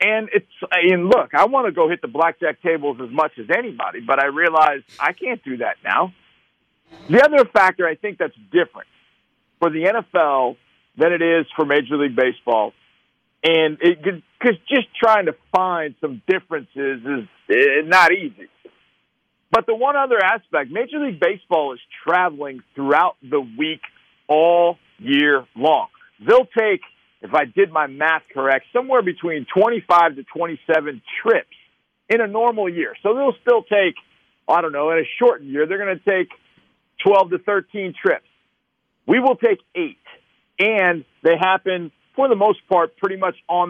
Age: 50-69